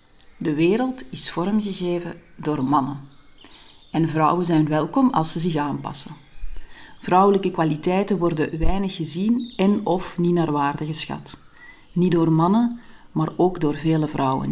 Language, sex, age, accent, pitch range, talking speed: Dutch, female, 40-59, Dutch, 150-190 Hz, 135 wpm